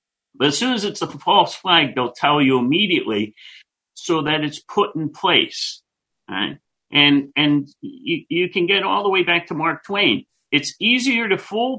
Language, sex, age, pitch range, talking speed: English, male, 50-69, 135-195 Hz, 185 wpm